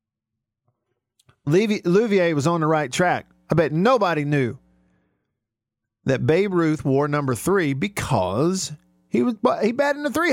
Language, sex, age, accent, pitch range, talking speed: English, male, 50-69, American, 110-165 Hz, 140 wpm